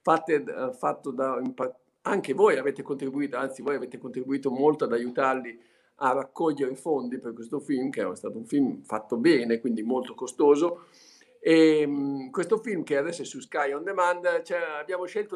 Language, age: Italian, 50-69